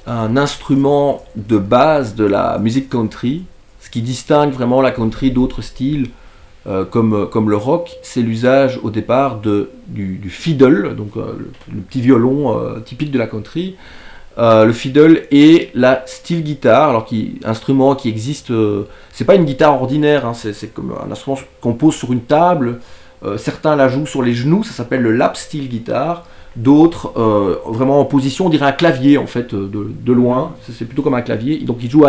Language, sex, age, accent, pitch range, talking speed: French, male, 30-49, French, 115-150 Hz, 195 wpm